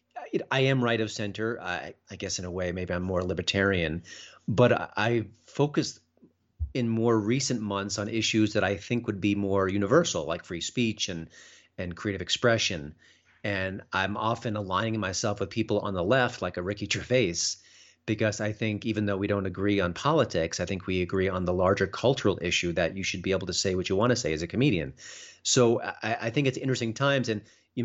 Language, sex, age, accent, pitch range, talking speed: English, male, 40-59, American, 95-115 Hz, 205 wpm